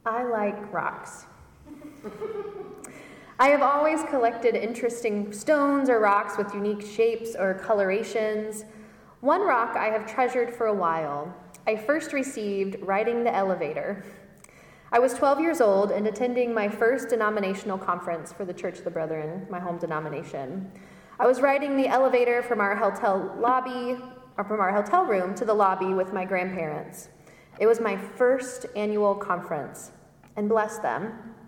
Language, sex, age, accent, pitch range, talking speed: English, female, 20-39, American, 205-270 Hz, 150 wpm